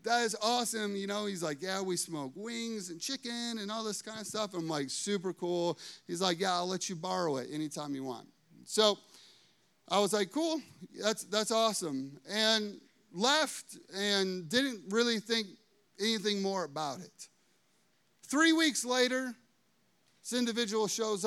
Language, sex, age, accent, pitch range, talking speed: English, male, 30-49, American, 150-210 Hz, 165 wpm